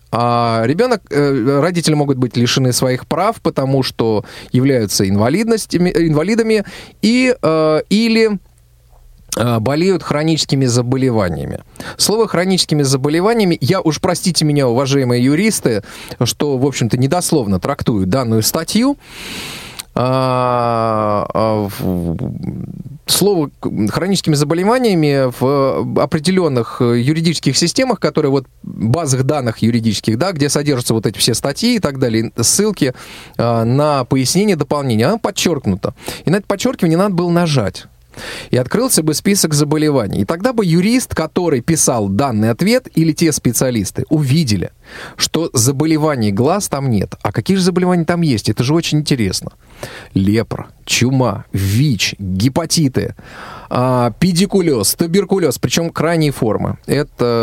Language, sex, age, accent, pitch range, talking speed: Russian, male, 20-39, native, 120-170 Hz, 115 wpm